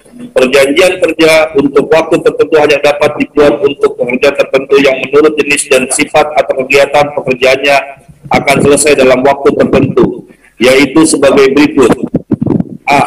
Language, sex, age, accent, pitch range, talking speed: Indonesian, male, 40-59, native, 130-150 Hz, 130 wpm